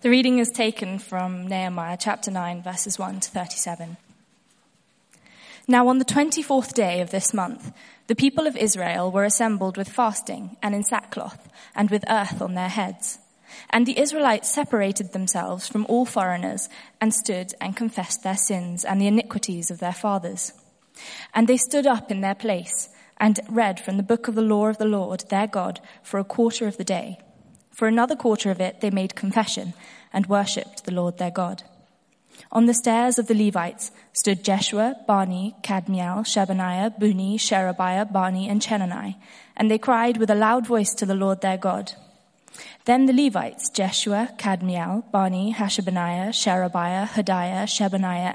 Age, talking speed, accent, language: 20-39, 170 wpm, British, English